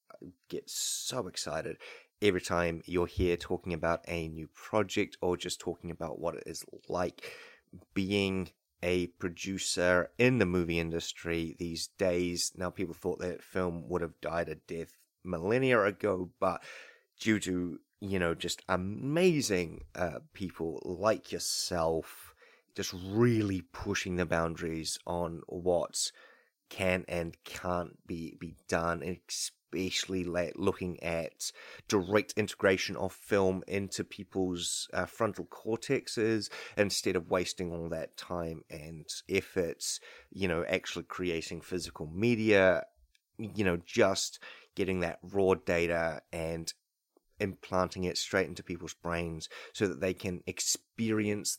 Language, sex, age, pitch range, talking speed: English, male, 30-49, 85-95 Hz, 130 wpm